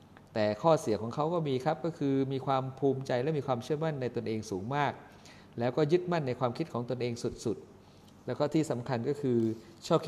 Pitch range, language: 115-150 Hz, Thai